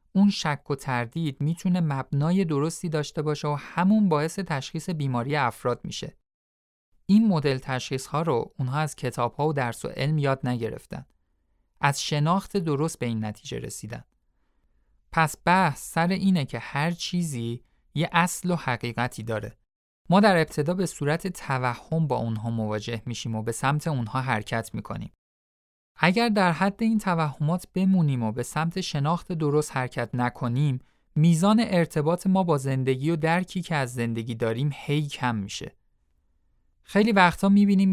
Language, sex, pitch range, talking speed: Persian, male, 120-170 Hz, 150 wpm